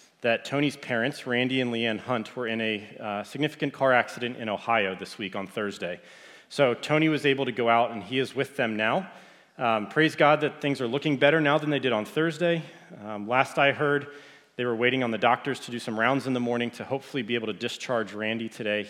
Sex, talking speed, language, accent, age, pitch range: male, 230 wpm, English, American, 30-49, 115-145 Hz